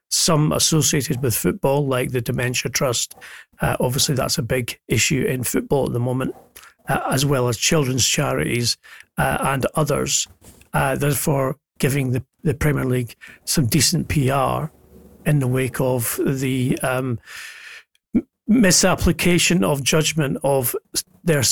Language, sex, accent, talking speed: English, male, British, 135 wpm